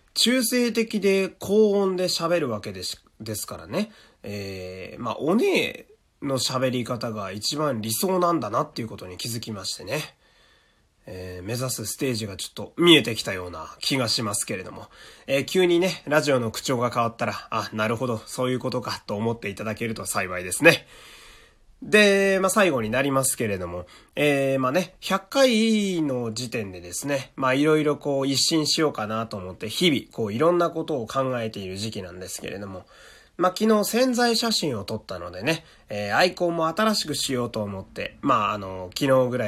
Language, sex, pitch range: Japanese, male, 105-165 Hz